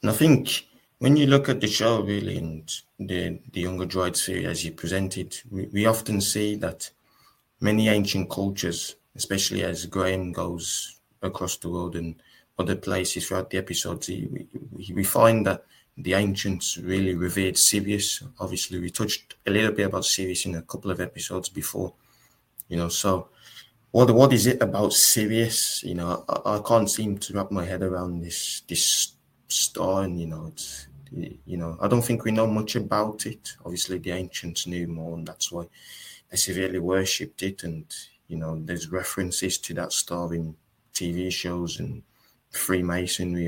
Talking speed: 175 wpm